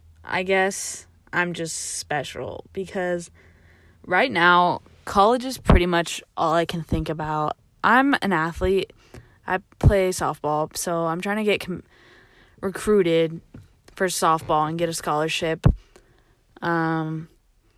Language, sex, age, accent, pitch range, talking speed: English, female, 20-39, American, 160-190 Hz, 120 wpm